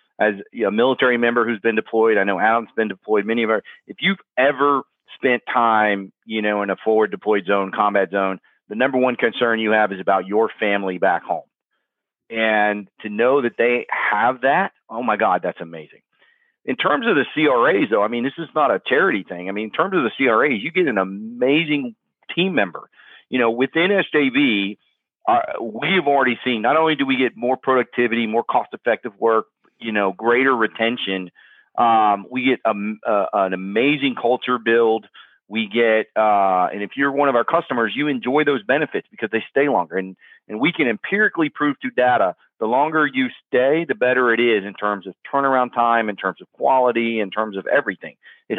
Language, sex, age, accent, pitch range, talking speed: English, male, 40-59, American, 110-135 Hz, 195 wpm